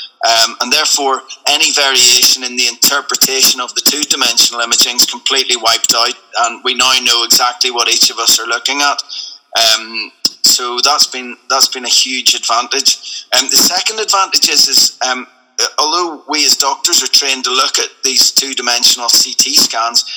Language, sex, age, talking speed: English, male, 30-49, 175 wpm